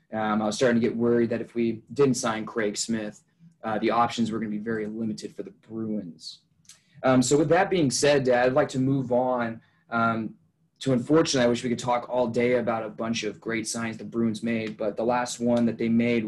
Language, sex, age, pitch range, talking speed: English, male, 20-39, 110-135 Hz, 230 wpm